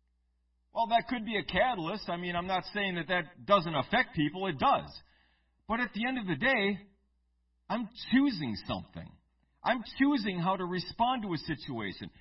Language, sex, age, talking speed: English, male, 50-69, 175 wpm